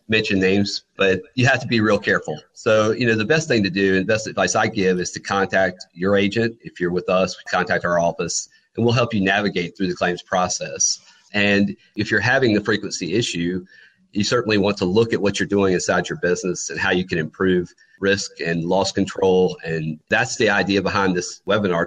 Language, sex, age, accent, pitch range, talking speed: English, male, 40-59, American, 90-110 Hz, 215 wpm